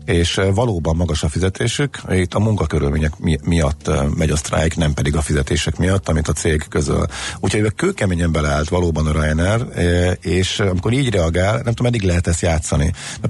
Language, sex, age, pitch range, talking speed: Hungarian, male, 50-69, 80-105 Hz, 175 wpm